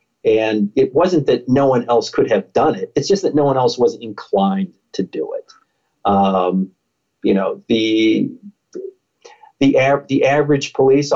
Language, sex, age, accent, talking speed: German, male, 40-59, American, 170 wpm